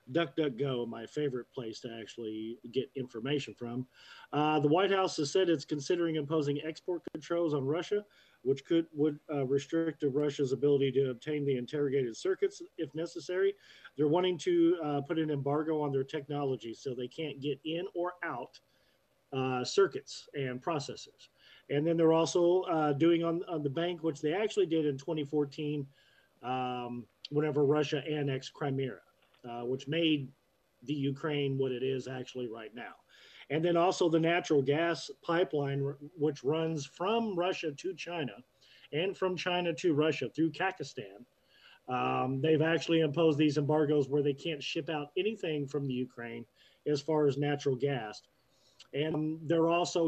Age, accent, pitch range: 40-59, American, 140-165 Hz